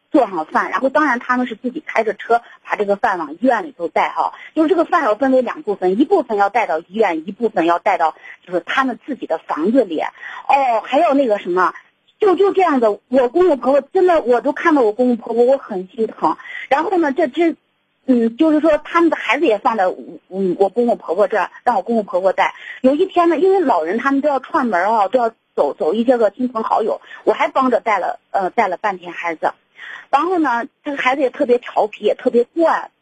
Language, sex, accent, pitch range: Chinese, female, native, 210-310 Hz